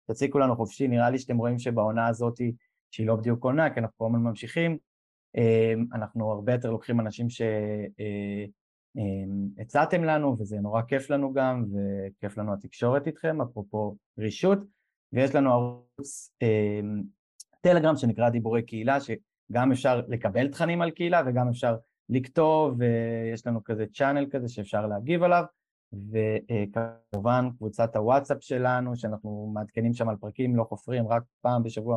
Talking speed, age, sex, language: 140 wpm, 20-39, male, Hebrew